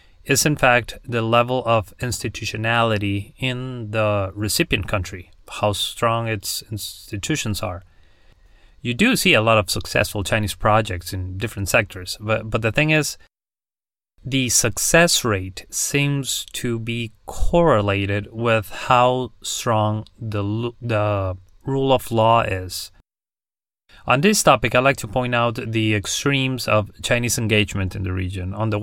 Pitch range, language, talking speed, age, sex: 100-120 Hz, English, 140 wpm, 30-49, male